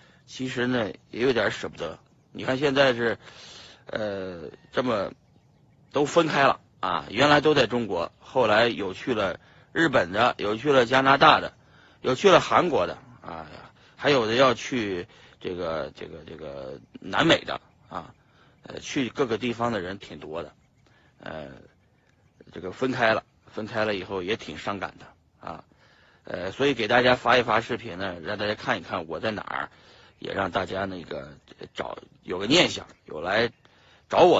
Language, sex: Chinese, male